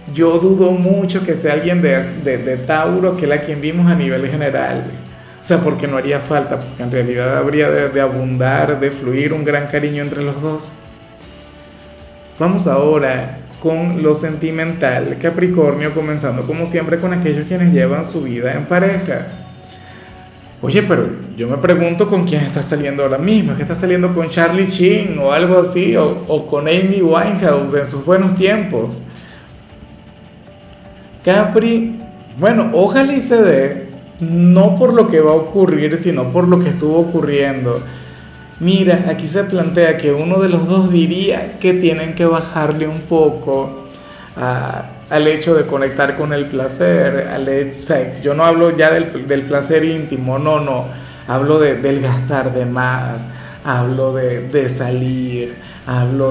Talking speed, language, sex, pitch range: 165 wpm, Spanish, male, 130-175 Hz